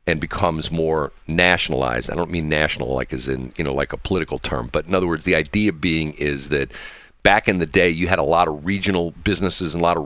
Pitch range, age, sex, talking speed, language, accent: 80-100 Hz, 50-69, male, 245 wpm, English, American